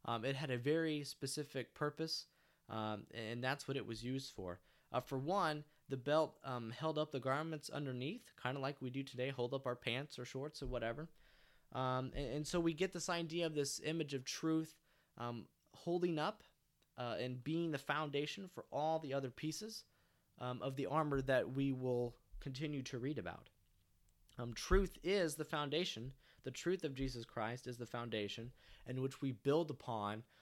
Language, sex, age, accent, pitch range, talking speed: English, male, 20-39, American, 120-150 Hz, 185 wpm